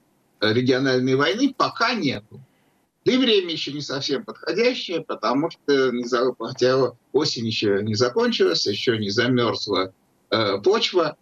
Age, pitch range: 50-69, 125-195 Hz